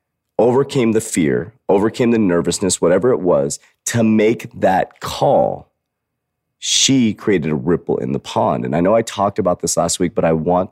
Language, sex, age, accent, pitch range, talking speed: English, male, 30-49, American, 90-120 Hz, 180 wpm